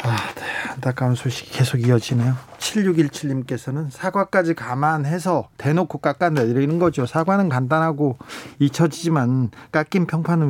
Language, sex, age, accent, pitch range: Korean, male, 40-59, native, 135-185 Hz